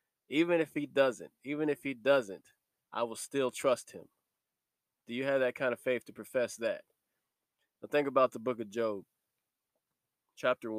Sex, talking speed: male, 170 wpm